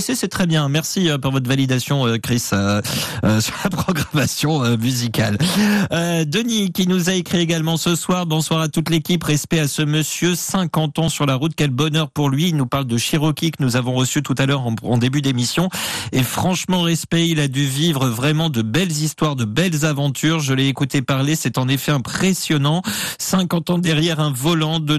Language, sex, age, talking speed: French, male, 40-59, 205 wpm